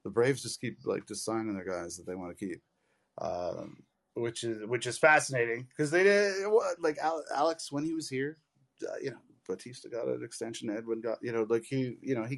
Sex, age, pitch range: male, 30-49, 115-170 Hz